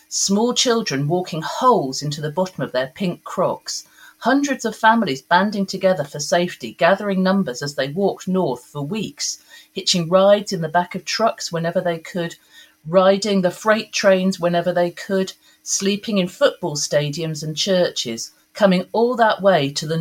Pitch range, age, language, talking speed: 150-195 Hz, 40-59, English, 165 wpm